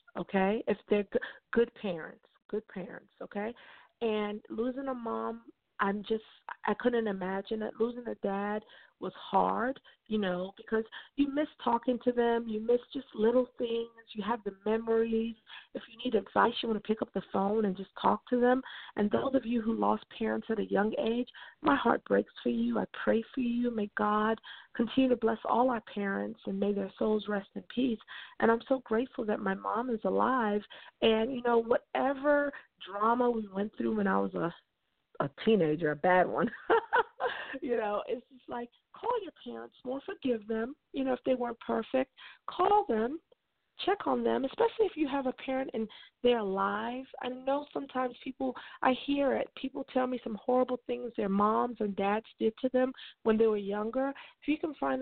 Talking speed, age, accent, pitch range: 190 wpm, 40-59, American, 210-255 Hz